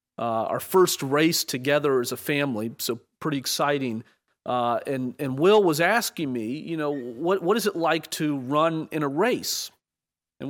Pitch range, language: 130-165 Hz, English